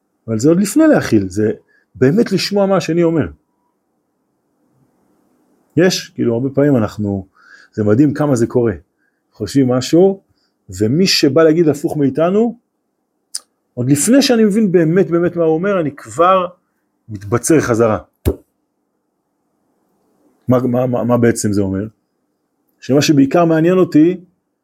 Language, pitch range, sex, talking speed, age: Hebrew, 110-160 Hz, male, 125 wpm, 40-59